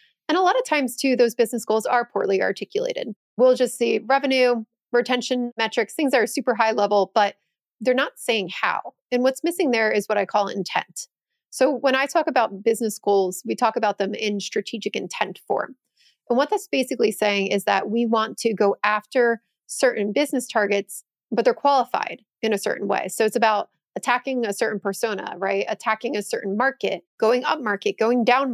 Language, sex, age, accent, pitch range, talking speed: English, female, 30-49, American, 205-250 Hz, 195 wpm